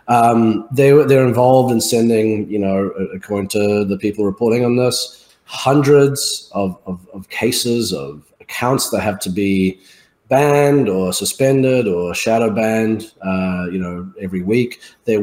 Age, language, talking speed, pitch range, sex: 30-49, English, 150 wpm, 95-125 Hz, male